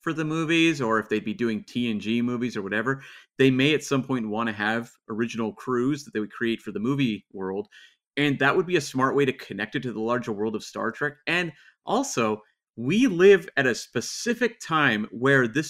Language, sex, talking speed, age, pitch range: English, male, 215 wpm, 30-49, 115-145 Hz